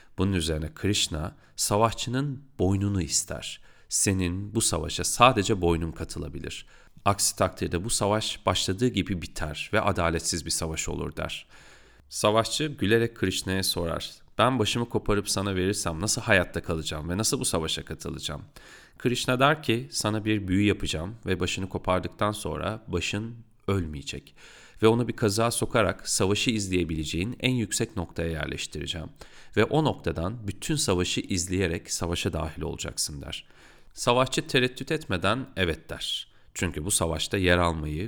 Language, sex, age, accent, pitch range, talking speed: Turkish, male, 30-49, native, 85-110 Hz, 135 wpm